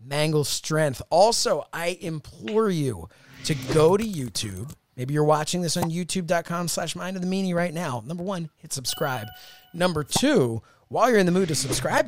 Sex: male